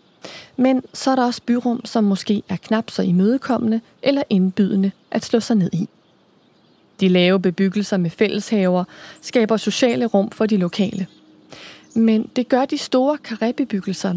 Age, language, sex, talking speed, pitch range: 30-49, Danish, female, 155 wpm, 185-230 Hz